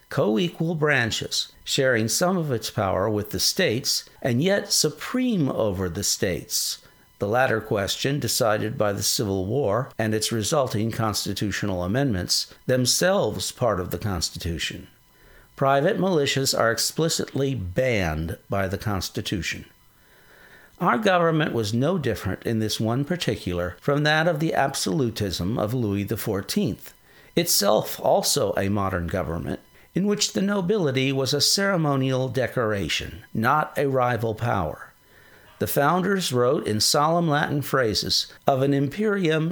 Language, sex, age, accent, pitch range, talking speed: English, male, 60-79, American, 105-145 Hz, 130 wpm